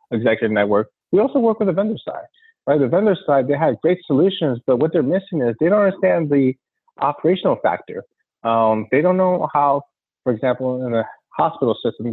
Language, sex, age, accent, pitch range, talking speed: English, male, 30-49, American, 110-150 Hz, 195 wpm